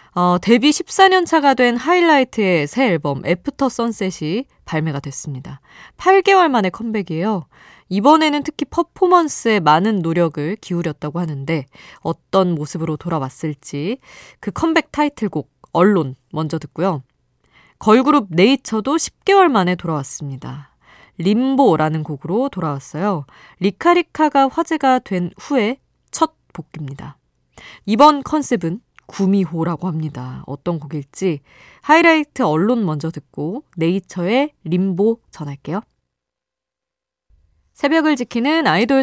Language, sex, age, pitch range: Korean, female, 20-39, 155-255 Hz